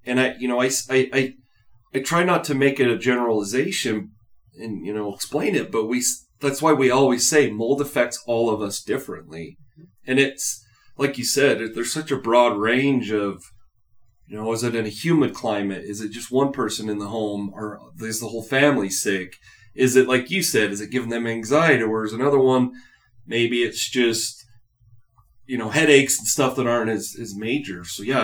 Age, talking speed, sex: 30-49, 200 wpm, male